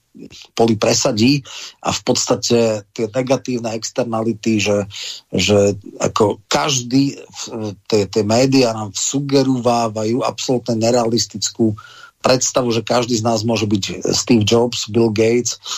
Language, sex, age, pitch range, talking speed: Slovak, male, 40-59, 110-125 Hz, 110 wpm